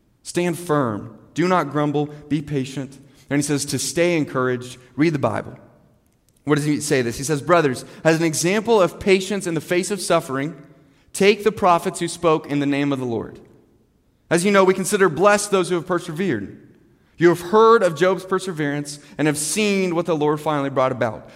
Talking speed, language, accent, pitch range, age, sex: 195 wpm, English, American, 135-185 Hz, 30-49, male